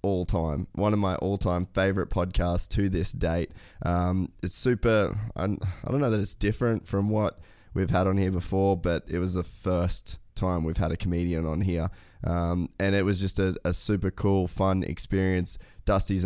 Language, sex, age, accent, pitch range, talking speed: English, male, 20-39, Australian, 85-100 Hz, 185 wpm